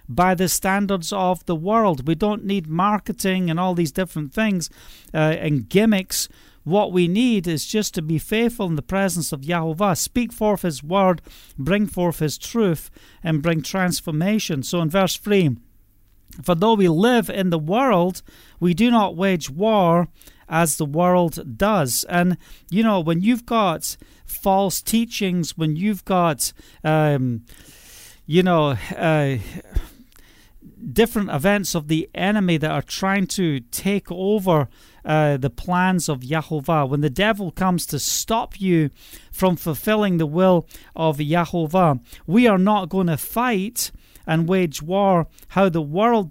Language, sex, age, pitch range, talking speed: English, male, 40-59, 155-200 Hz, 155 wpm